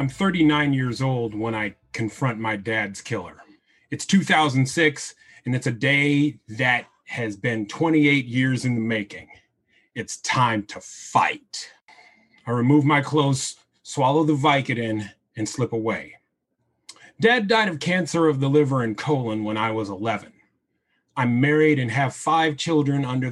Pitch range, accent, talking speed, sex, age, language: 120-155 Hz, American, 150 wpm, male, 30-49, English